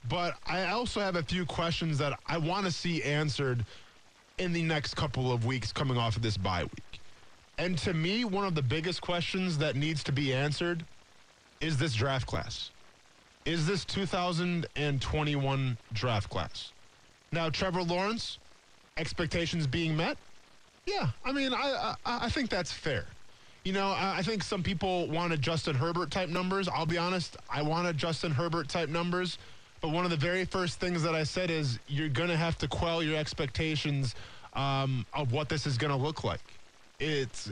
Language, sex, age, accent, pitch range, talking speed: English, male, 20-39, American, 140-175 Hz, 180 wpm